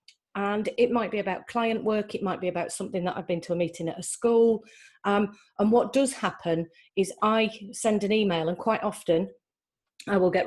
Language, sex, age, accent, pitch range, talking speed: English, female, 40-59, British, 175-215 Hz, 210 wpm